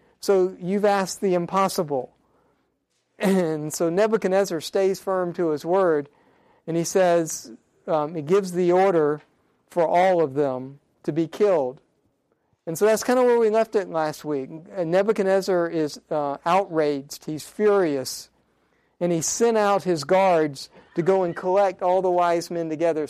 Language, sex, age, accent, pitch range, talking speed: English, male, 50-69, American, 155-190 Hz, 155 wpm